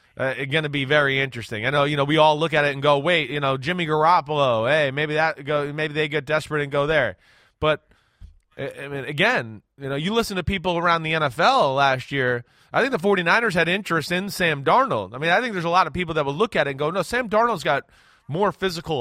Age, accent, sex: 30-49, American, male